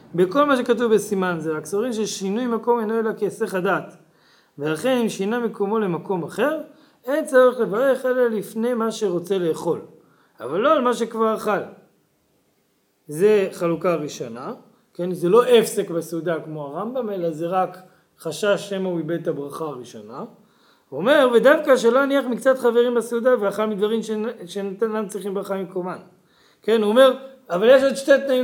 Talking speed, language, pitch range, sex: 160 wpm, Hebrew, 190-240 Hz, male